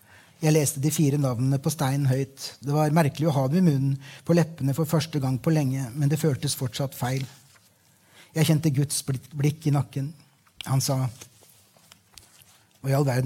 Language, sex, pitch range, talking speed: English, male, 135-160 Hz, 165 wpm